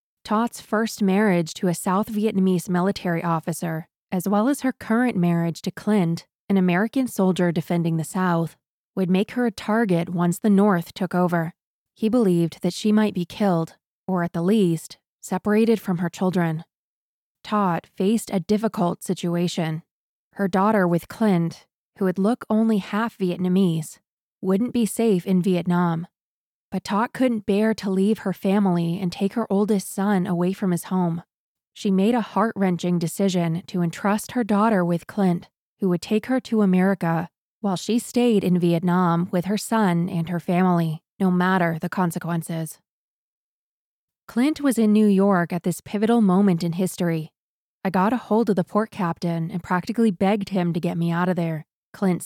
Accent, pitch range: American, 175-210 Hz